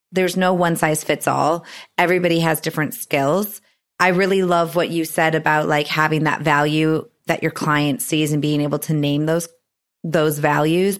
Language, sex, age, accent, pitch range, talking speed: English, female, 30-49, American, 150-170 Hz, 180 wpm